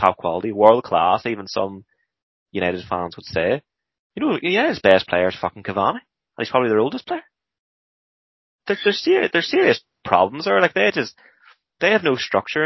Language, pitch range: English, 90-105 Hz